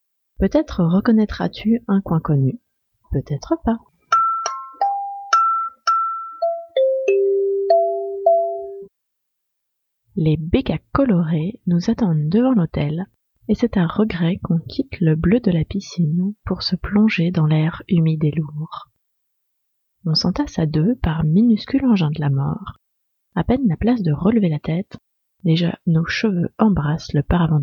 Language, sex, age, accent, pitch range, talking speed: French, female, 30-49, French, 160-230 Hz, 125 wpm